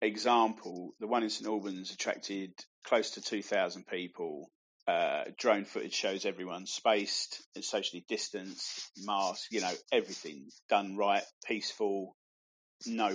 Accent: British